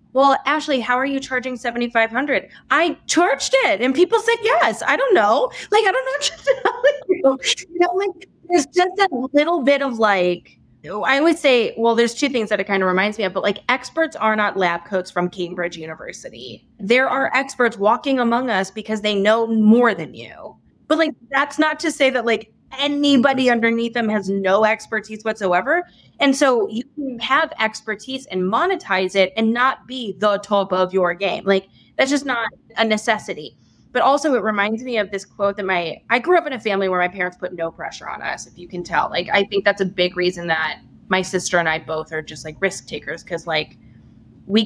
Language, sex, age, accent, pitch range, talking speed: English, female, 20-39, American, 185-270 Hz, 205 wpm